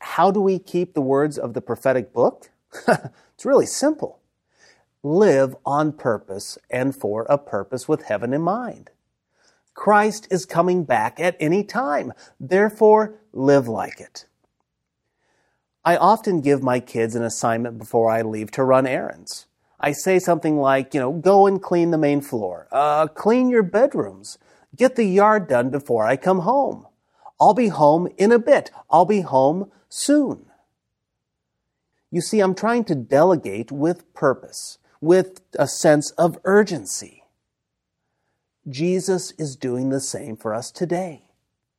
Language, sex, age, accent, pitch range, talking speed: English, male, 40-59, American, 130-185 Hz, 150 wpm